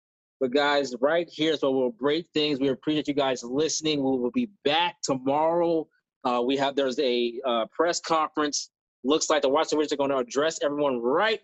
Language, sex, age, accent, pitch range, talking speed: English, male, 20-39, American, 125-150 Hz, 200 wpm